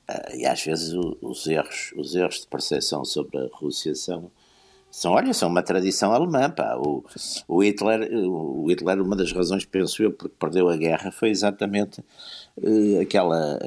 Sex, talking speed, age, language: male, 165 wpm, 60-79, Portuguese